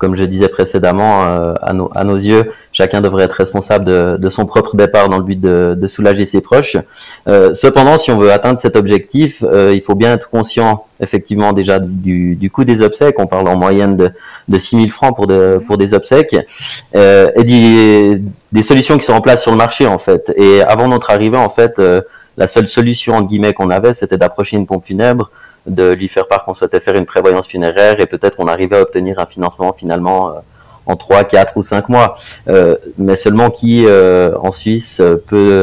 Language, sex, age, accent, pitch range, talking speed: French, male, 30-49, French, 95-115 Hz, 215 wpm